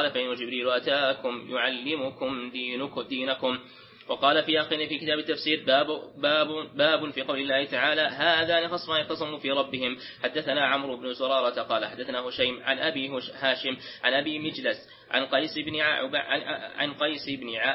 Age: 20-39